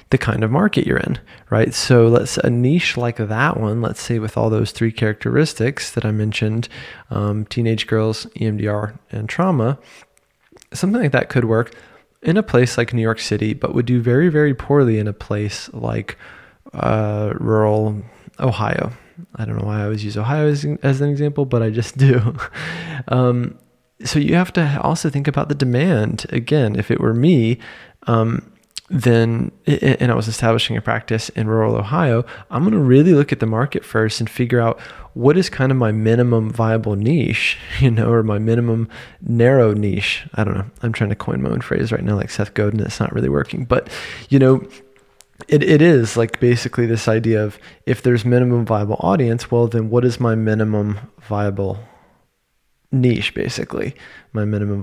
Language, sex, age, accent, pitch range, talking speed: English, male, 20-39, American, 110-135 Hz, 185 wpm